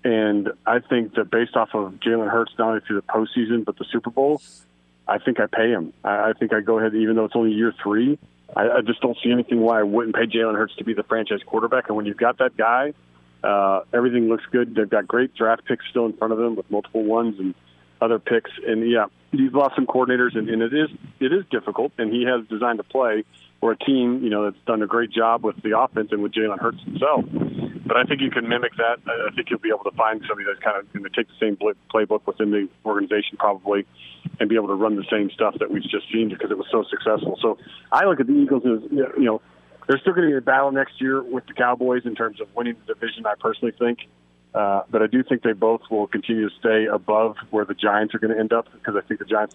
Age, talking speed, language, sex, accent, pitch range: 40-59, 260 wpm, English, male, American, 105-120 Hz